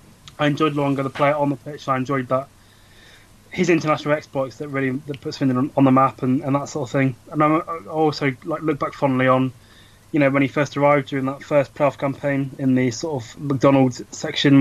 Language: English